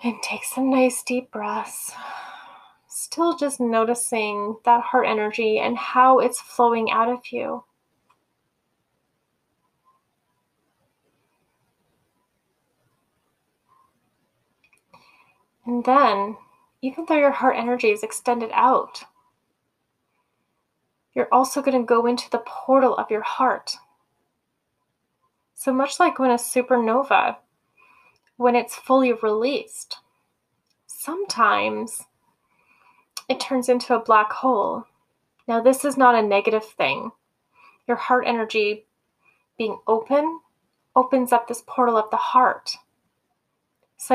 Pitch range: 230-265 Hz